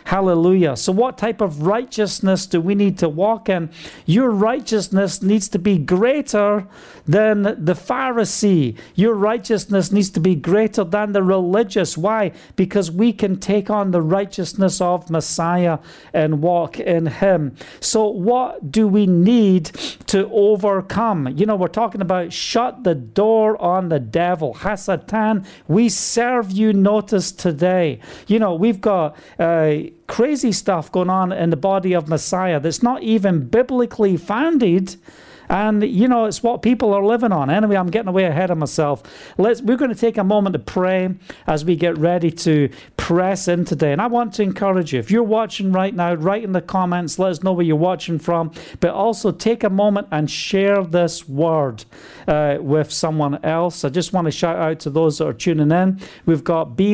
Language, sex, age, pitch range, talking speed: English, male, 40-59, 170-210 Hz, 180 wpm